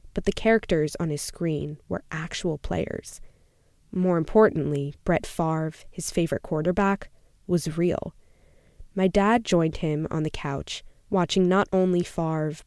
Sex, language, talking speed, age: female, English, 135 wpm, 20-39